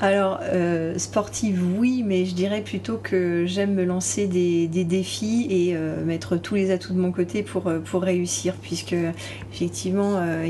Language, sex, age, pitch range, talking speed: French, female, 30-49, 165-190 Hz, 170 wpm